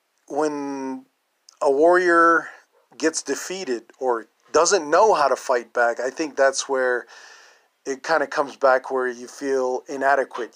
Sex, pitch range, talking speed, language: male, 125-150 Hz, 140 wpm, English